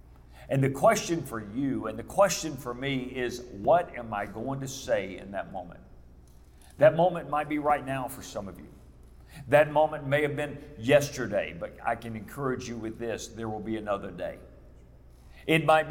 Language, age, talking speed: English, 50-69, 190 wpm